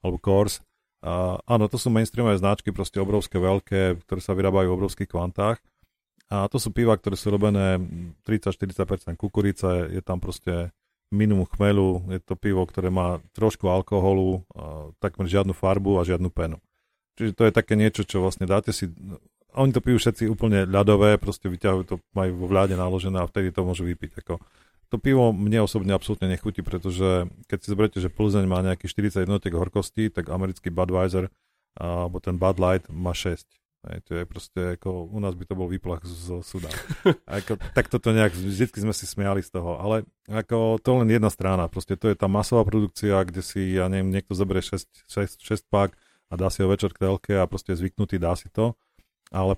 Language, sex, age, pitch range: Slovak, male, 40-59, 90-105 Hz